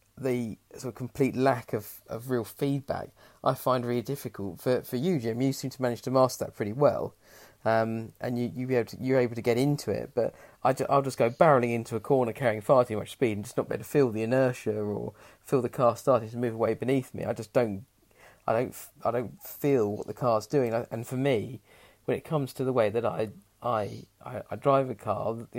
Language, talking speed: English, 240 wpm